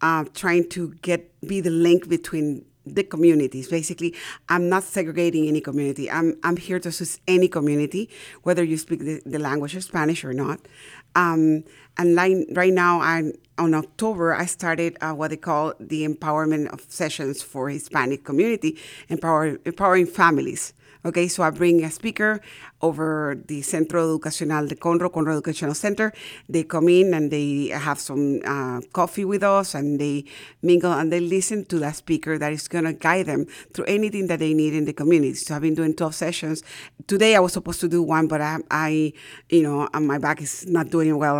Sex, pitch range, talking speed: female, 150-175 Hz, 190 wpm